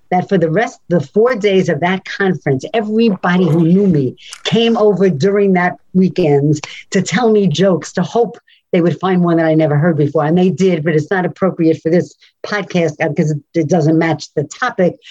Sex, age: female, 50-69